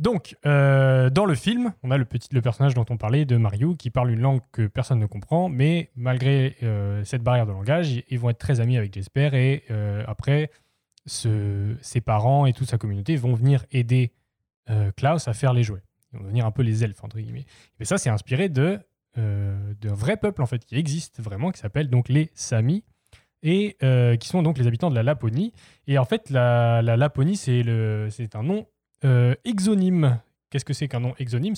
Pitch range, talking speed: 115-150 Hz, 215 wpm